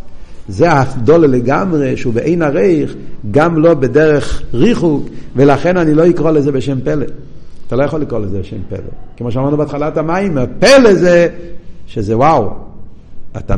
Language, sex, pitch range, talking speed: Hebrew, male, 120-170 Hz, 145 wpm